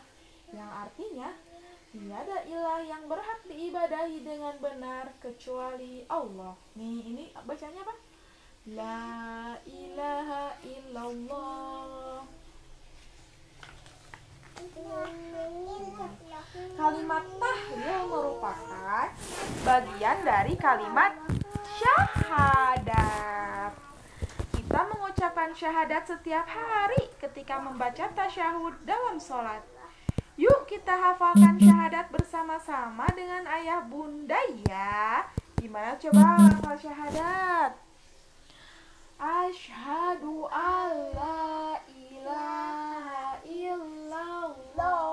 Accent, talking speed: native, 70 wpm